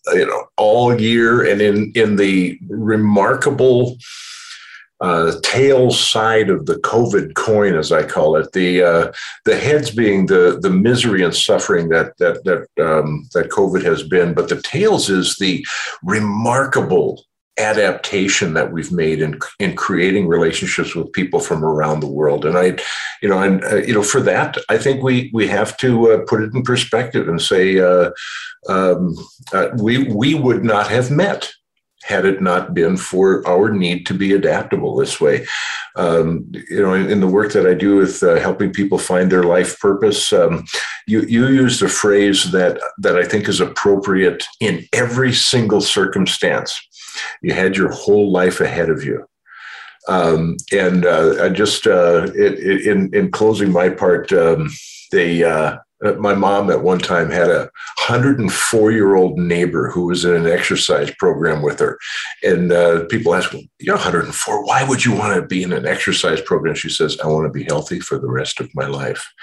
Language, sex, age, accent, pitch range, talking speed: English, male, 50-69, American, 90-125 Hz, 180 wpm